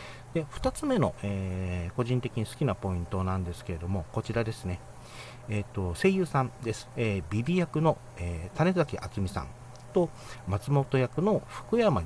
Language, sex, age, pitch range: Japanese, male, 40-59, 95-140 Hz